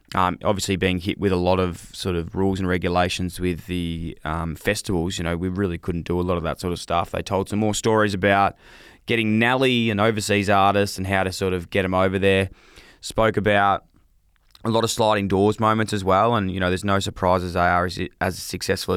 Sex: male